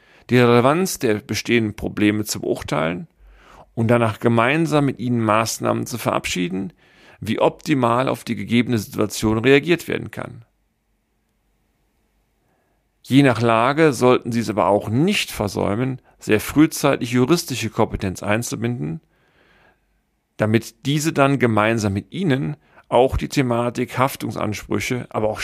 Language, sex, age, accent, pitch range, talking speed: German, male, 40-59, German, 105-130 Hz, 120 wpm